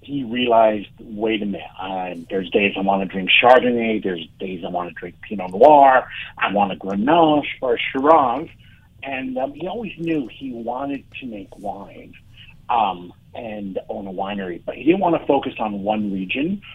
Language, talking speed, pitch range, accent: English, 190 wpm, 105-140 Hz, American